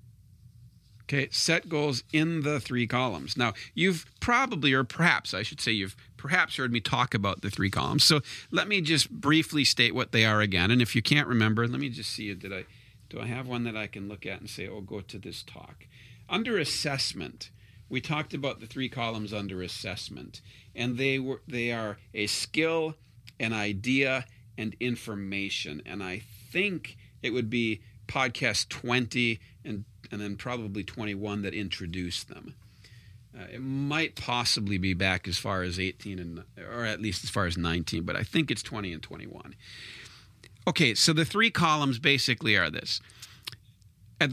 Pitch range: 105-135 Hz